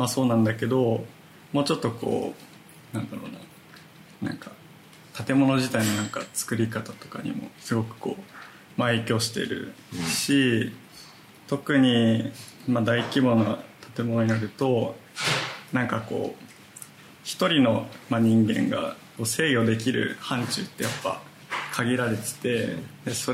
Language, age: Japanese, 20-39